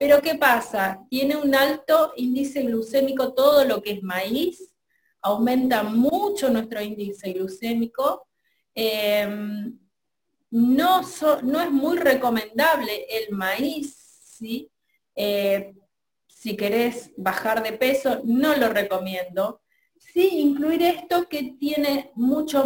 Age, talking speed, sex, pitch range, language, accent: 30-49, 110 wpm, female, 215-290 Hz, Spanish, Argentinian